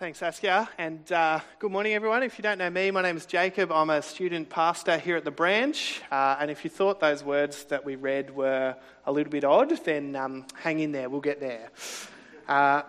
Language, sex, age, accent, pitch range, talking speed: English, male, 20-39, Australian, 145-195 Hz, 225 wpm